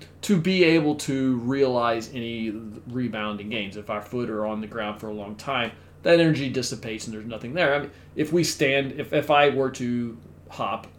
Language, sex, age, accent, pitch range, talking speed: English, male, 40-59, American, 110-140 Hz, 190 wpm